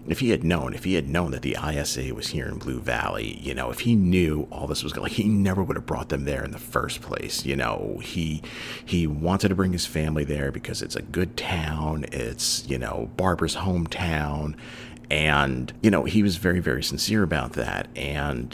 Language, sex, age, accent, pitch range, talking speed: English, male, 40-59, American, 75-95 Hz, 215 wpm